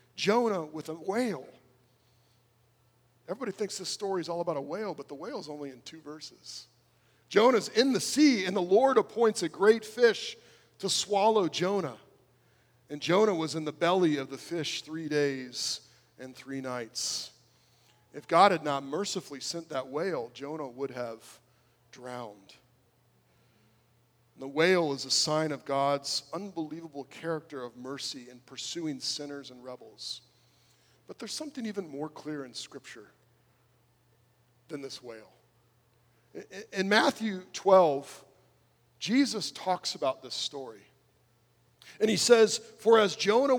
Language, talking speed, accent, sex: English, 140 wpm, American, male